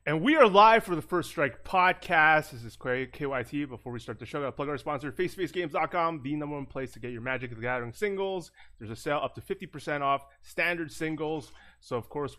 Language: English